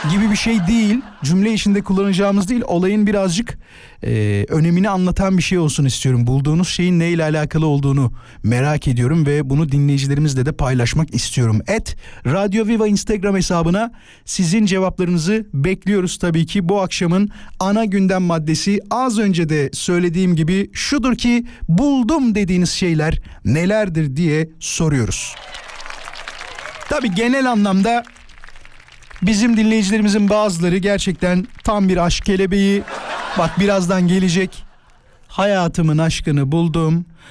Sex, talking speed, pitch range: male, 120 wpm, 140-195 Hz